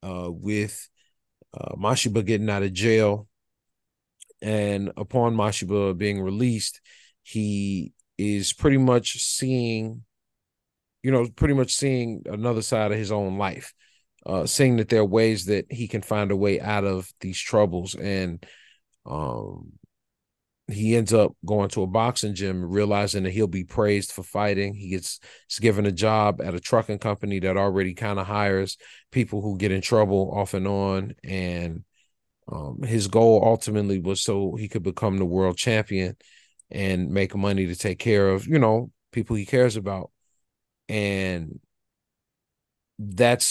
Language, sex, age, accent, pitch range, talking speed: English, male, 40-59, American, 95-115 Hz, 155 wpm